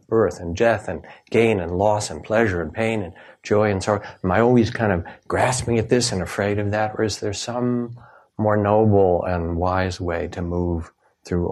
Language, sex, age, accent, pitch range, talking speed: English, male, 60-79, American, 90-110 Hz, 205 wpm